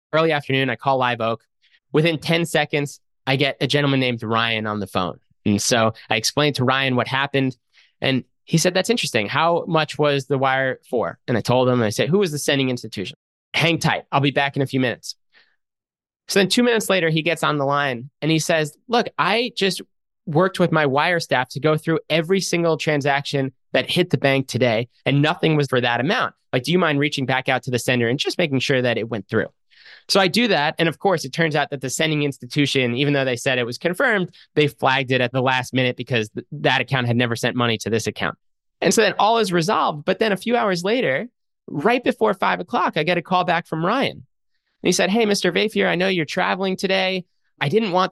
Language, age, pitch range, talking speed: English, 20-39, 130-180 Hz, 235 wpm